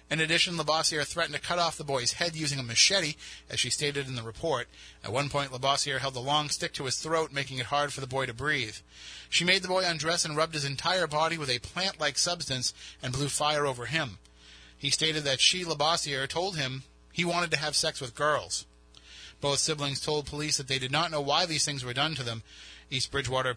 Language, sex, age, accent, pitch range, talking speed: English, male, 30-49, American, 130-155 Hz, 225 wpm